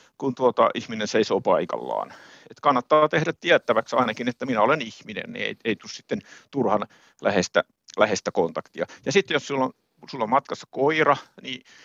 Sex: male